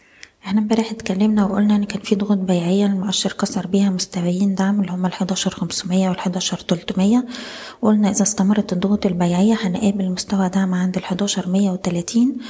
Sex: female